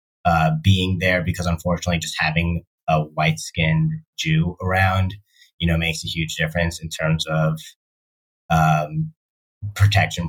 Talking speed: 135 wpm